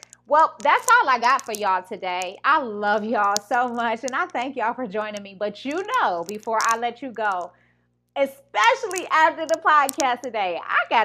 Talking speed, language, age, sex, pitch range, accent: 190 wpm, English, 30-49, female, 185-270 Hz, American